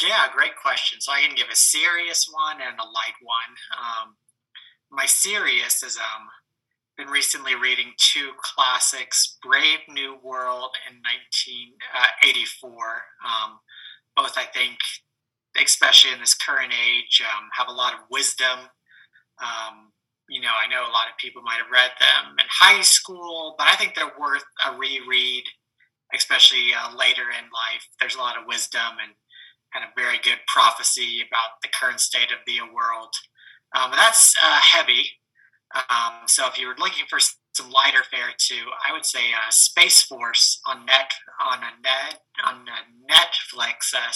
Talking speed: 165 wpm